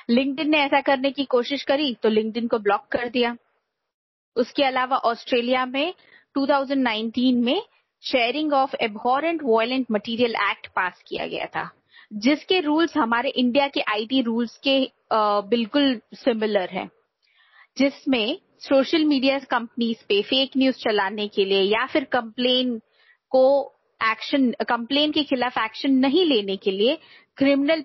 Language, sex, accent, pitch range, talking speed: Hindi, female, native, 225-280 Hz, 140 wpm